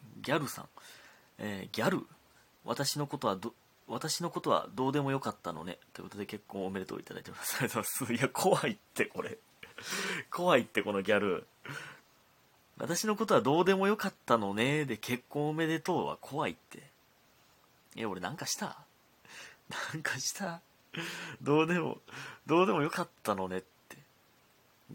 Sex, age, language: male, 30-49, Japanese